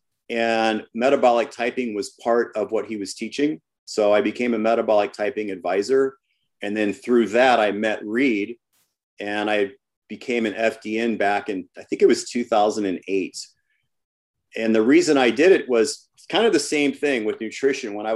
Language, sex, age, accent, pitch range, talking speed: English, male, 40-59, American, 105-135 Hz, 170 wpm